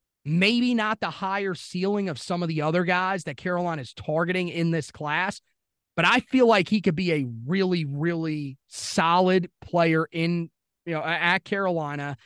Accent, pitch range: American, 155-185 Hz